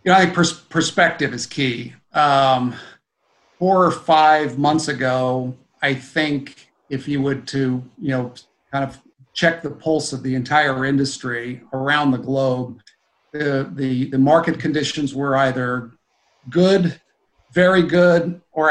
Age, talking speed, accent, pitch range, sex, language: 50-69, 145 wpm, American, 130-160 Hz, male, English